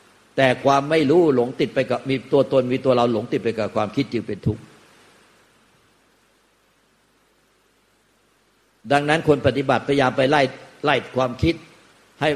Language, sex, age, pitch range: Thai, male, 60-79, 115-140 Hz